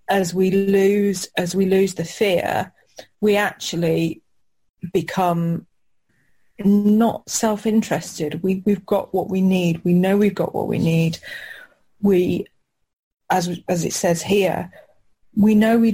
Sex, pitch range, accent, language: female, 170-200 Hz, British, English